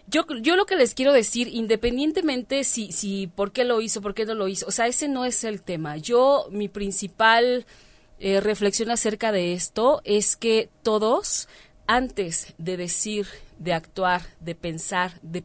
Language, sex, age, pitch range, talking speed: Spanish, female, 30-49, 175-225 Hz, 175 wpm